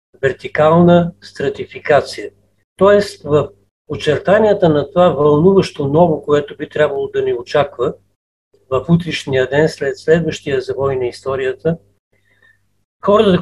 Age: 50-69